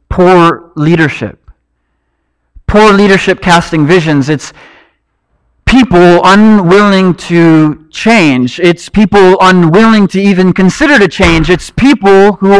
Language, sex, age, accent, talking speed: English, male, 40-59, American, 105 wpm